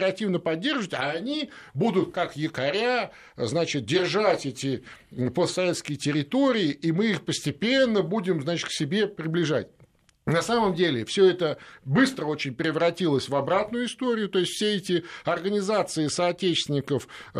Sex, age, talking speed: male, 50-69, 130 wpm